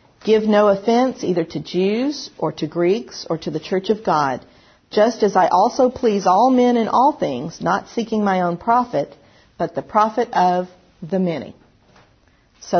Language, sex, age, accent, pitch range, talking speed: English, female, 50-69, American, 160-225 Hz, 175 wpm